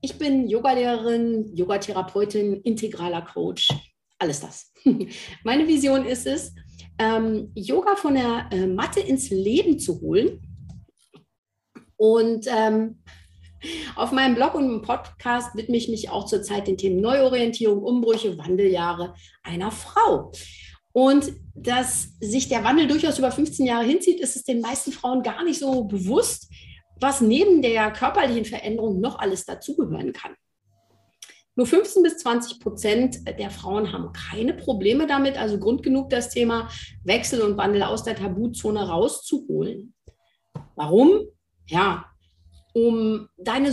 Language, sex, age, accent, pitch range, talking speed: German, female, 40-59, German, 205-270 Hz, 135 wpm